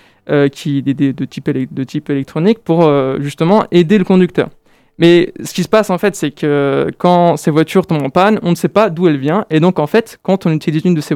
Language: French